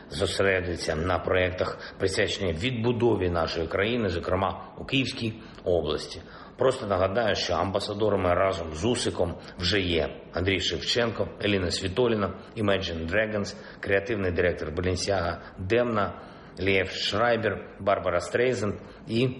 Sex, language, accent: male, Ukrainian, native